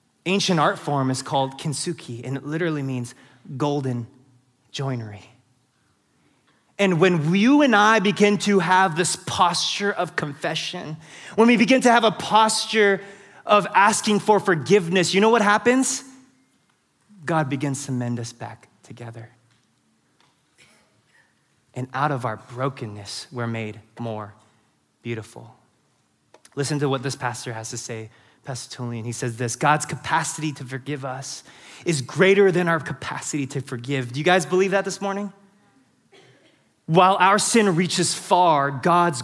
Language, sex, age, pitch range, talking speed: English, male, 20-39, 130-200 Hz, 140 wpm